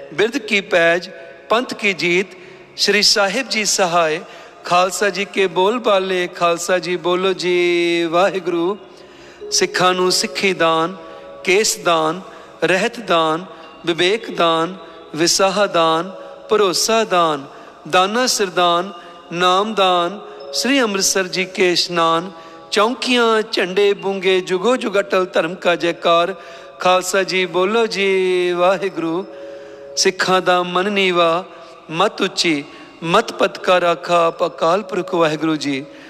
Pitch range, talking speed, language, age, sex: 170-195 Hz, 100 wpm, Punjabi, 50-69, male